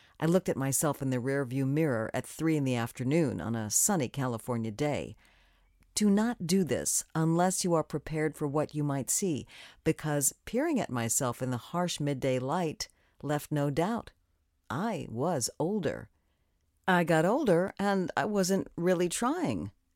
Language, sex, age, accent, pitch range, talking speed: English, female, 50-69, American, 125-180 Hz, 160 wpm